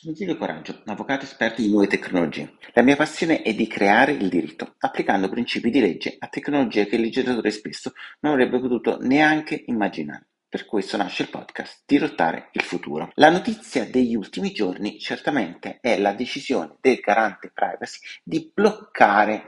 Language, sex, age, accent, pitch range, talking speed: Italian, male, 40-59, native, 100-150 Hz, 170 wpm